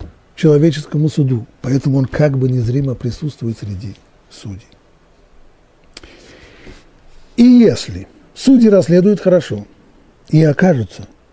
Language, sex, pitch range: Russian, male, 110-150 Hz